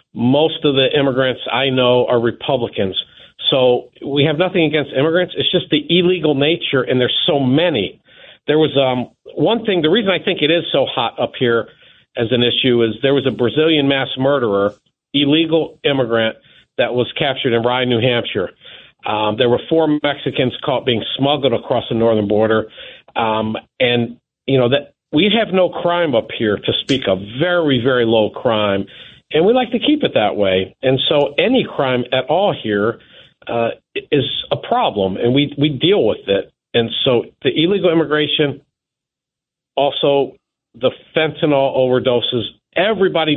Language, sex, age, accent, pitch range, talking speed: English, male, 50-69, American, 125-160 Hz, 170 wpm